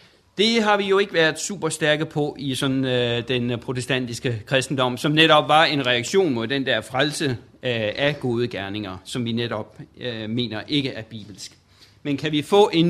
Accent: native